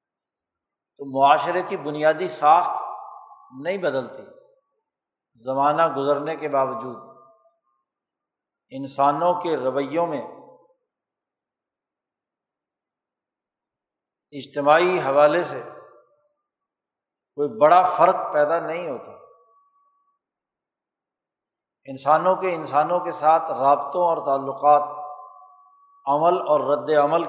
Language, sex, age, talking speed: Urdu, male, 60-79, 80 wpm